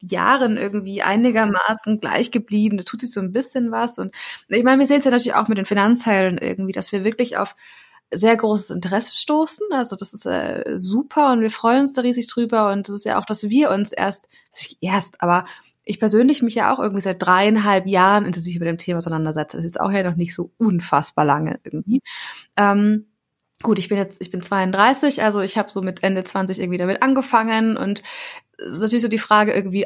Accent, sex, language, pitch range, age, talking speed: German, female, German, 195-240 Hz, 20-39, 215 wpm